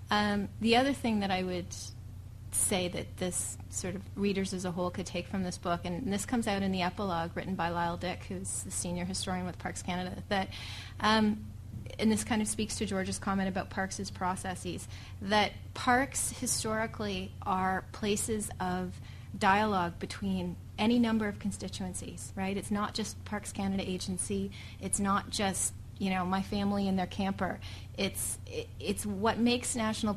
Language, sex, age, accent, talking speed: English, female, 30-49, American, 175 wpm